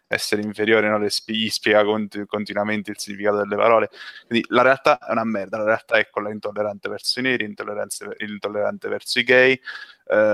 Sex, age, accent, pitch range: male, 20-39, native, 105-120 Hz